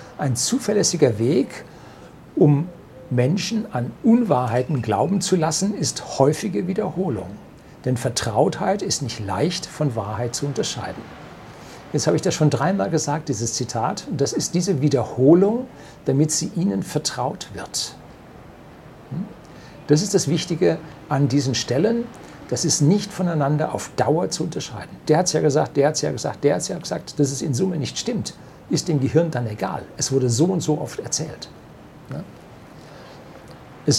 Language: German